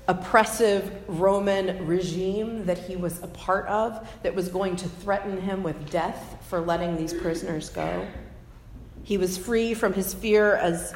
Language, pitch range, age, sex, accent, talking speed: English, 170-215 Hz, 40-59, female, American, 160 wpm